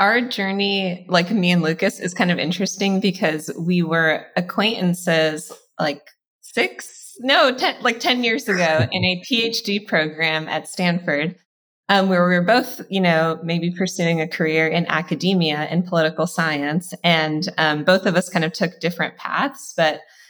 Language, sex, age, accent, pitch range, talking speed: English, female, 20-39, American, 155-195 Hz, 165 wpm